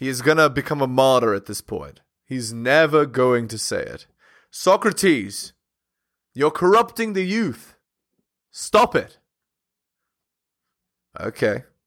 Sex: male